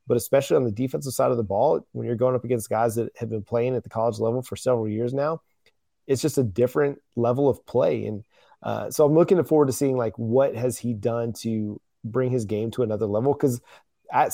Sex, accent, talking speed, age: male, American, 235 wpm, 30-49